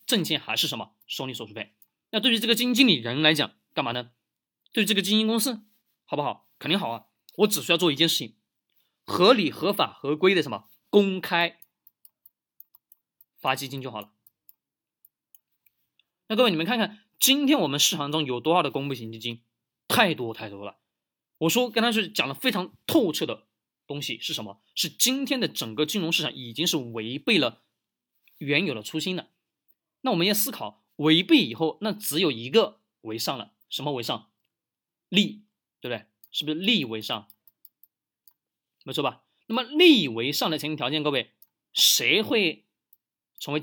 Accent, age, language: native, 20-39, Chinese